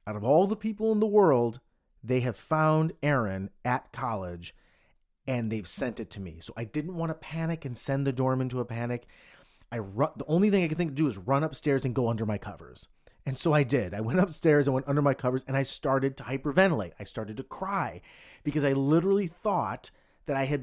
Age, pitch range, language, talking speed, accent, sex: 30-49, 120-185 Hz, English, 230 wpm, American, male